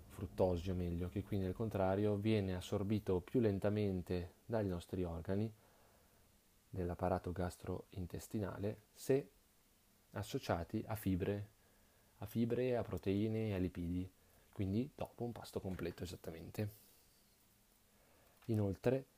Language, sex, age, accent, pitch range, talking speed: Italian, male, 30-49, native, 95-110 Hz, 105 wpm